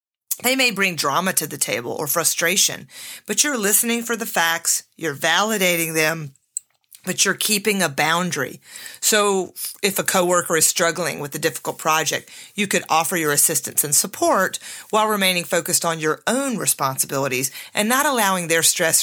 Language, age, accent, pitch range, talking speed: English, 40-59, American, 160-215 Hz, 165 wpm